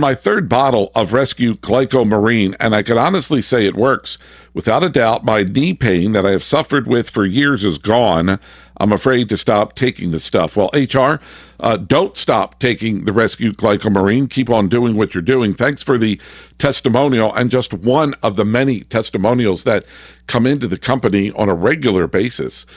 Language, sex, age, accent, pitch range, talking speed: English, male, 50-69, American, 105-130 Hz, 185 wpm